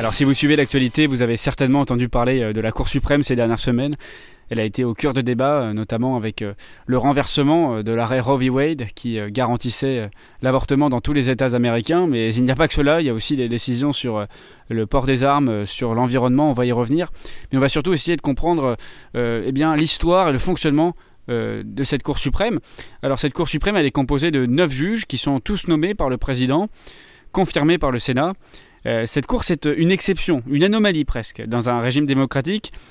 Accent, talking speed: French, 215 wpm